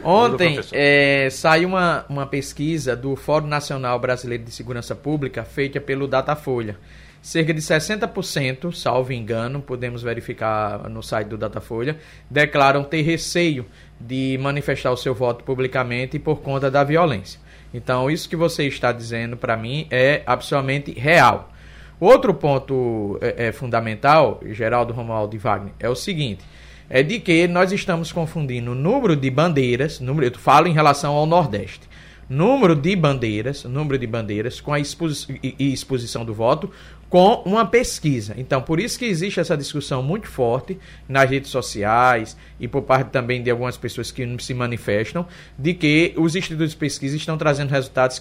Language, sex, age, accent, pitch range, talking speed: Portuguese, male, 20-39, Brazilian, 120-160 Hz, 155 wpm